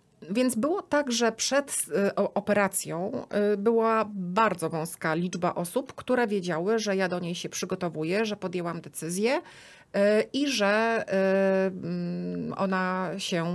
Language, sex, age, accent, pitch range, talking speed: Polish, female, 30-49, native, 180-215 Hz, 115 wpm